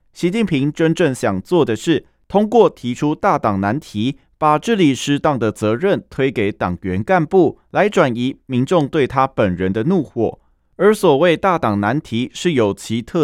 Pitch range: 115-175 Hz